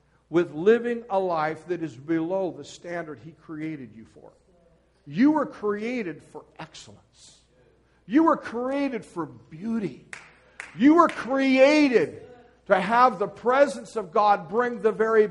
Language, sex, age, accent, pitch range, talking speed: English, male, 50-69, American, 215-290 Hz, 135 wpm